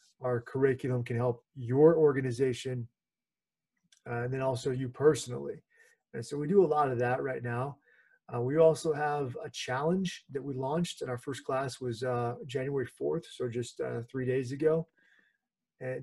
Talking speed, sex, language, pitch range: 170 wpm, male, English, 125-145 Hz